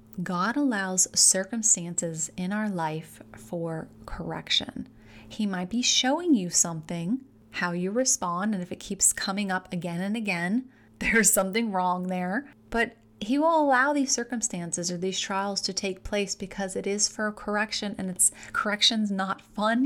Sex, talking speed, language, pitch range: female, 160 wpm, English, 175-220 Hz